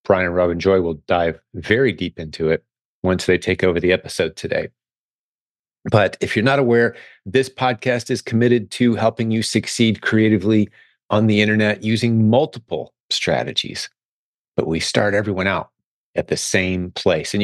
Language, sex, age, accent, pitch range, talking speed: English, male, 30-49, American, 90-115 Hz, 165 wpm